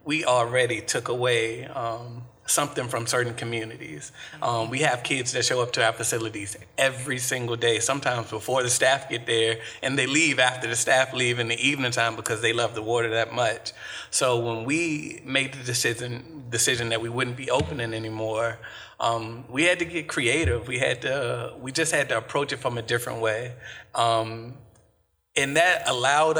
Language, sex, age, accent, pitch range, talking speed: English, male, 30-49, American, 115-135 Hz, 185 wpm